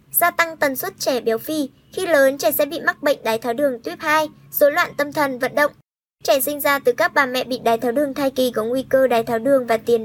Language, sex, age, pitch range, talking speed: Vietnamese, male, 20-39, 245-305 Hz, 275 wpm